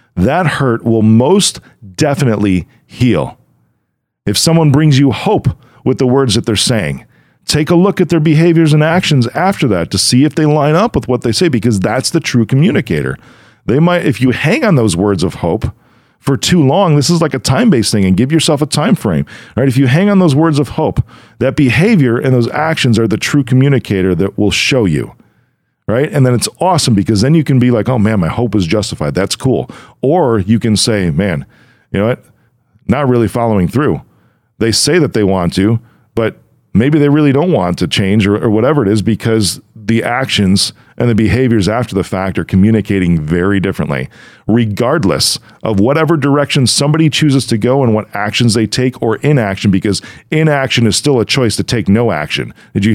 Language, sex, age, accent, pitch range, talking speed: English, male, 40-59, American, 105-145 Hz, 205 wpm